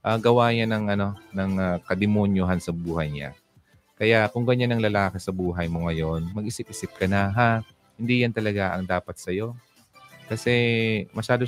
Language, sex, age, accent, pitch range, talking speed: Filipino, male, 30-49, native, 90-120 Hz, 180 wpm